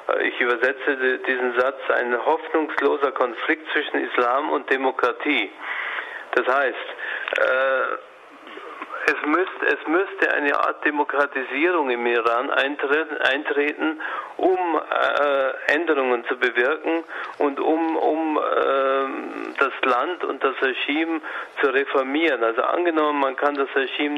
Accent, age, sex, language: German, 40-59, male, German